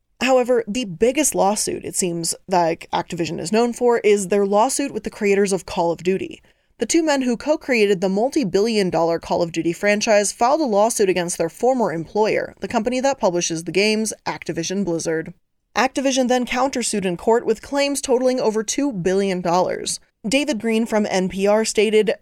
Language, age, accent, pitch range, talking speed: English, 20-39, American, 180-240 Hz, 175 wpm